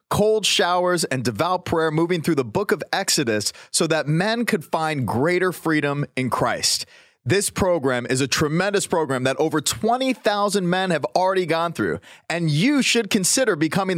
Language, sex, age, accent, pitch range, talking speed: English, male, 30-49, American, 135-190 Hz, 165 wpm